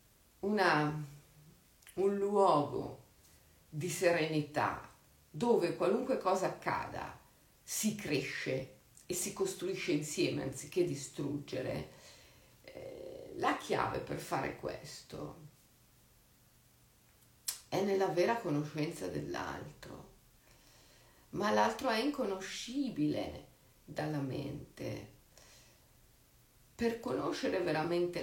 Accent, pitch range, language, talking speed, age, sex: native, 140-195 Hz, Italian, 75 wpm, 50-69, female